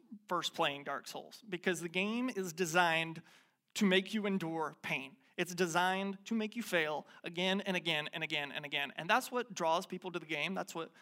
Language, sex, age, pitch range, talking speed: English, male, 30-49, 165-210 Hz, 200 wpm